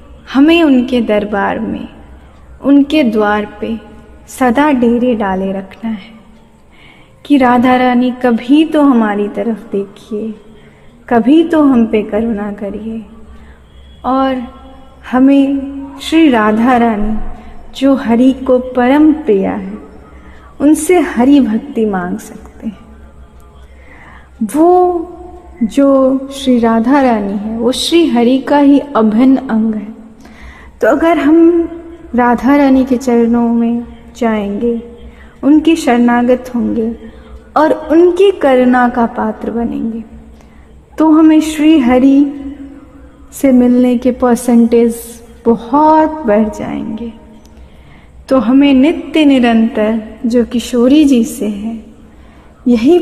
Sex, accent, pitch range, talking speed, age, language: female, native, 220-275 Hz, 110 wpm, 20-39, Hindi